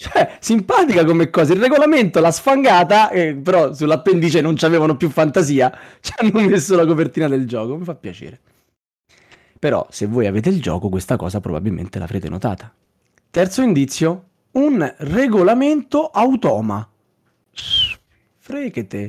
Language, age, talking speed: Italian, 30-49, 130 wpm